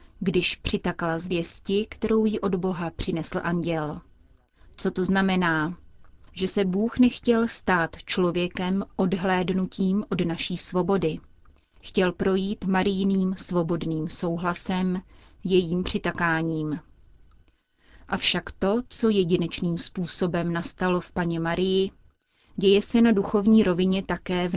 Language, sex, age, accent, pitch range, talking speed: Czech, female, 30-49, native, 165-195 Hz, 110 wpm